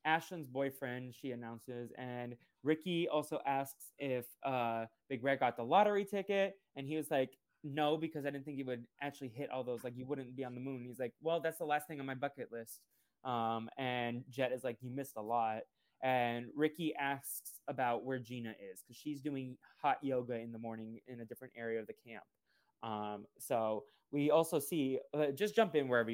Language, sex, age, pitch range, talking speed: English, male, 20-39, 120-145 Hz, 205 wpm